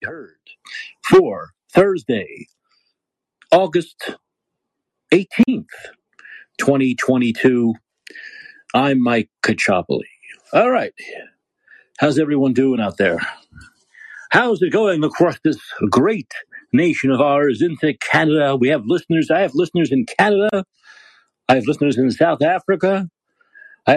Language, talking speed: English, 105 wpm